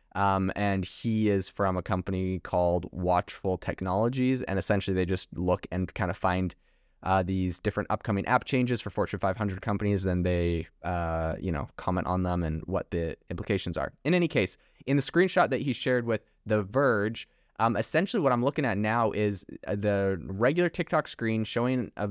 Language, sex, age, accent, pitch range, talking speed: English, male, 20-39, American, 95-115 Hz, 185 wpm